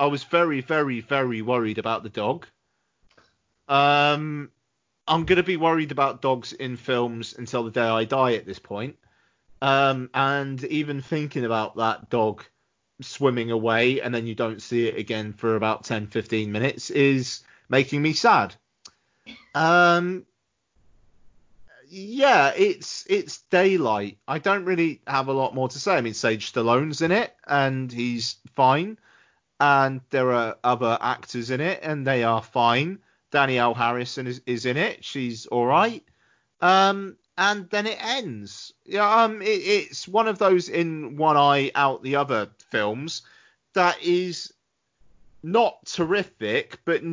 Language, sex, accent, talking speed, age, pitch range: English, male, British, 150 wpm, 30-49, 120-170 Hz